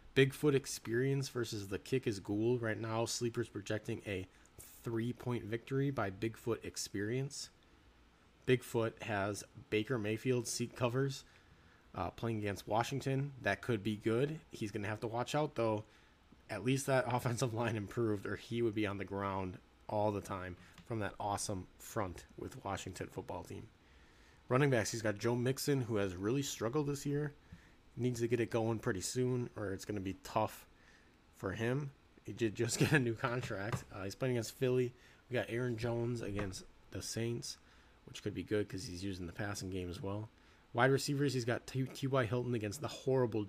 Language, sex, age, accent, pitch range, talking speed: English, male, 30-49, American, 100-120 Hz, 180 wpm